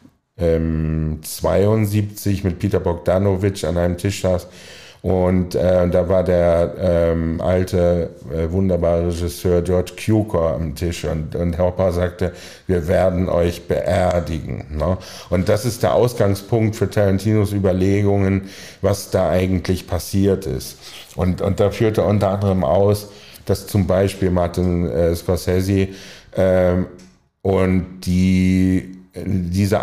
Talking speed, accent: 125 wpm, German